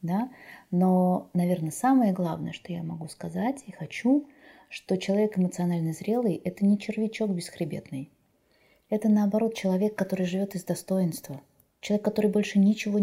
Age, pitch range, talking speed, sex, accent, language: 20-39, 170-210 Hz, 135 wpm, female, native, Russian